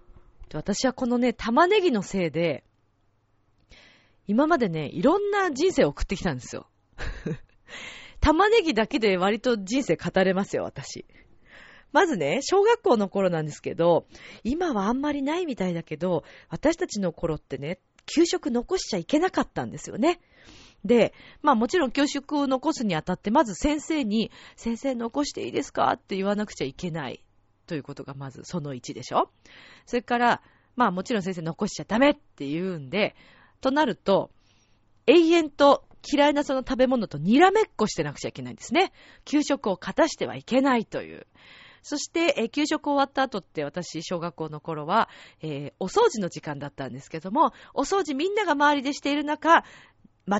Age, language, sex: 40-59, Japanese, female